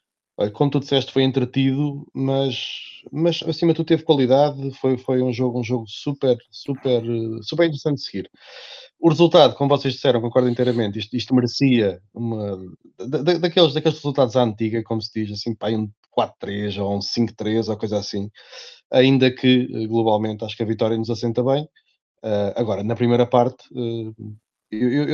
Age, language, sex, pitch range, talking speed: 20-39, Portuguese, male, 115-135 Hz, 170 wpm